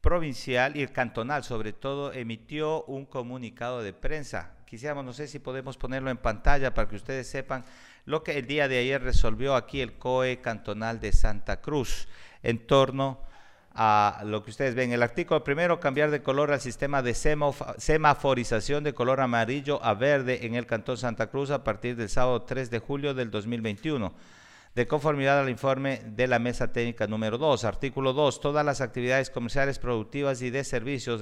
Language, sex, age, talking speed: Spanish, male, 50-69, 180 wpm